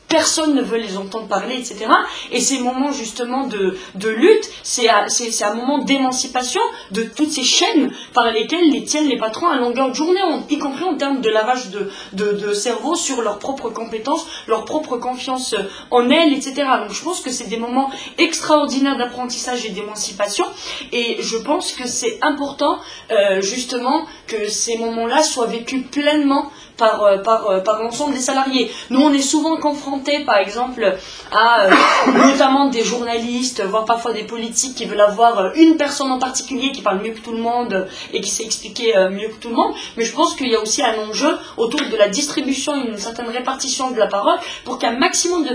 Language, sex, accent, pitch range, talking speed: French, female, French, 225-285 Hz, 190 wpm